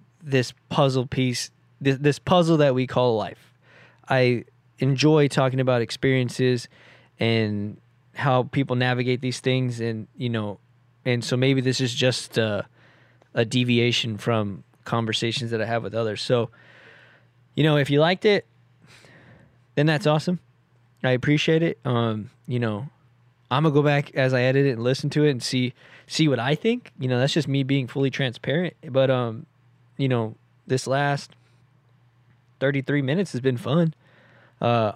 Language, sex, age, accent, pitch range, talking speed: English, male, 20-39, American, 115-135 Hz, 160 wpm